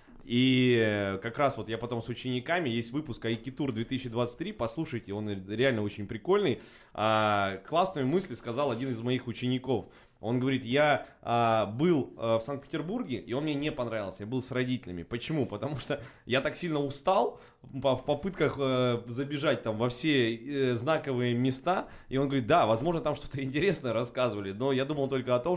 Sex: male